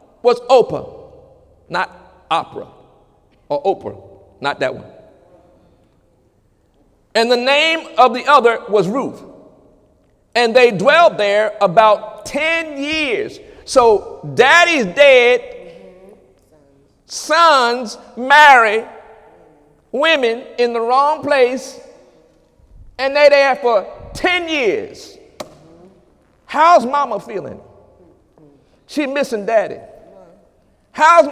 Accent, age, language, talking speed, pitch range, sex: American, 50-69, English, 90 wpm, 230-325 Hz, male